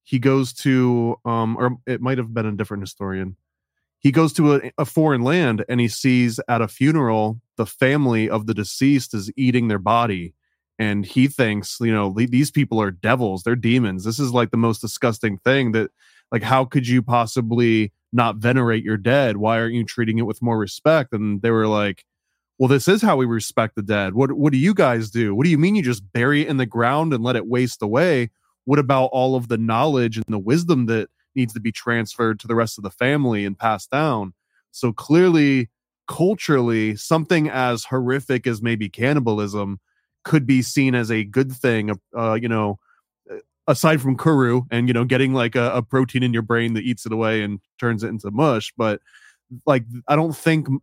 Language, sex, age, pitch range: English, male, 20-39, 110-135 Hz